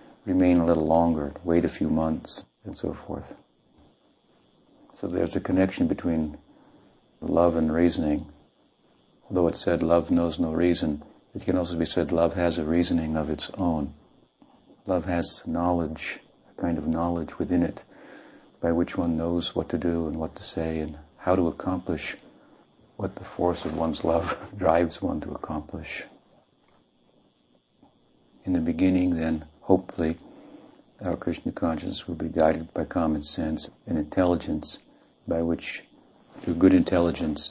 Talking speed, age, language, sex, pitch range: 150 wpm, 50-69, English, male, 80-85 Hz